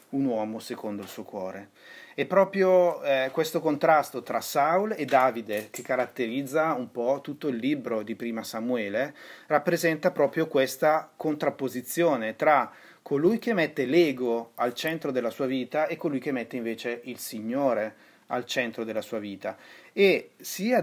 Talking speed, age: 155 wpm, 30-49